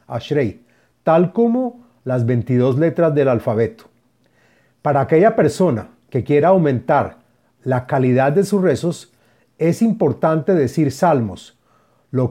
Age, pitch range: 40-59, 125-165 Hz